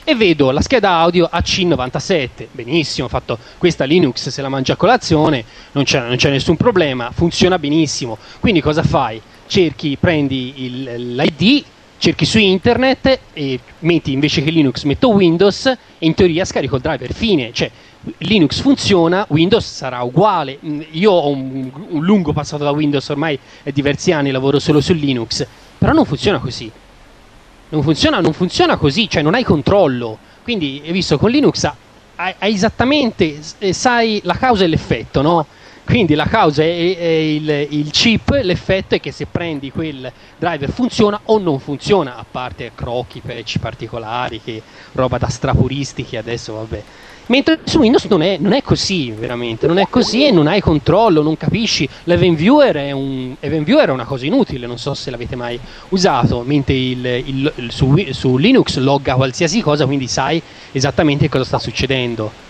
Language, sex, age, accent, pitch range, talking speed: Italian, male, 30-49, native, 130-180 Hz, 170 wpm